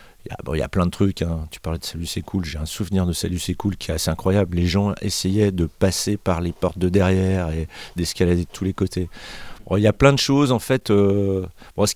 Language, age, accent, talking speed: French, 40-59, French, 265 wpm